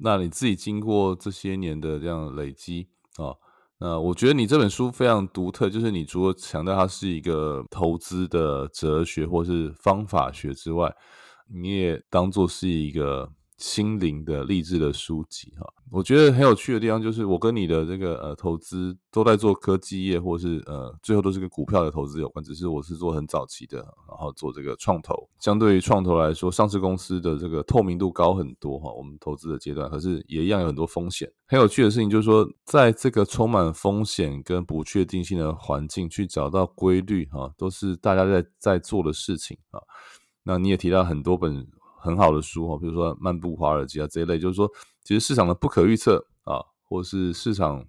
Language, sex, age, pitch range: Chinese, male, 20-39, 80-100 Hz